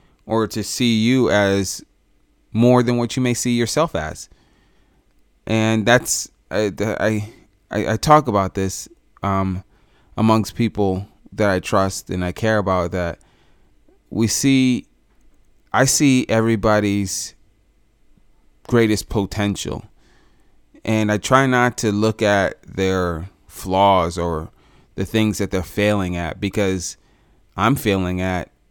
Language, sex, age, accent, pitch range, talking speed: English, male, 30-49, American, 95-110 Hz, 125 wpm